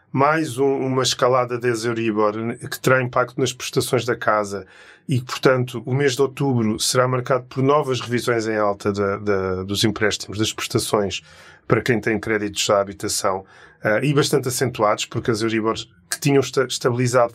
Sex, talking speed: male, 150 wpm